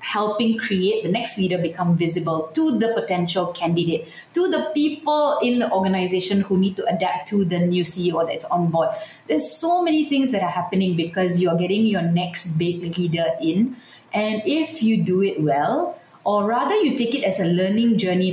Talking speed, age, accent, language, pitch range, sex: 190 wpm, 20-39, Malaysian, English, 170-220 Hz, female